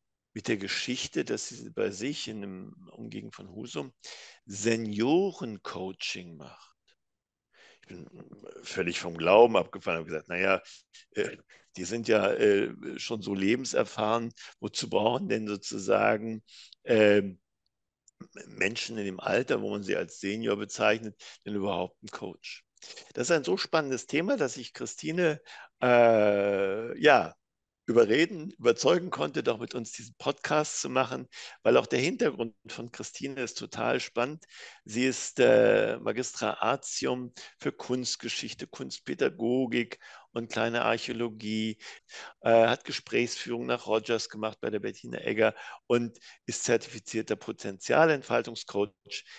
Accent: German